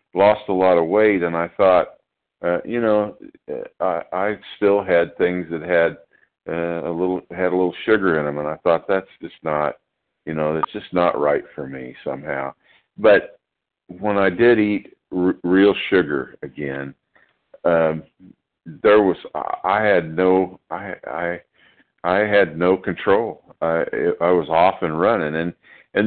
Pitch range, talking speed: 80-95 Hz, 165 wpm